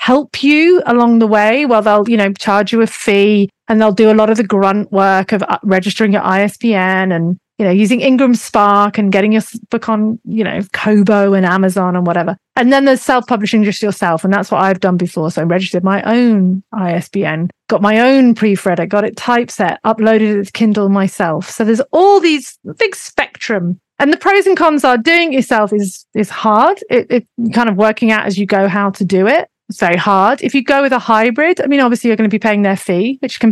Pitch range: 200-240 Hz